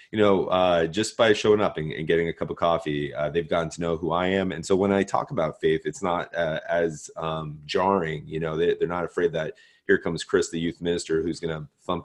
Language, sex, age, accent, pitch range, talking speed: English, male, 30-49, American, 80-100 Hz, 260 wpm